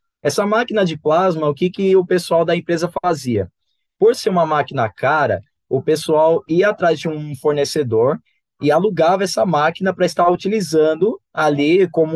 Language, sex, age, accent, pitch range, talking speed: Portuguese, male, 20-39, Brazilian, 150-200 Hz, 165 wpm